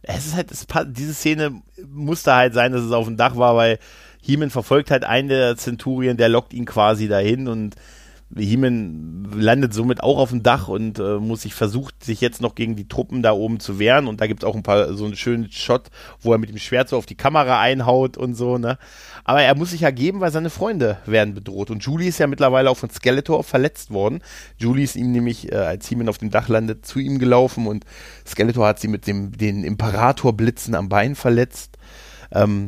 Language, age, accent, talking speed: German, 30-49, German, 220 wpm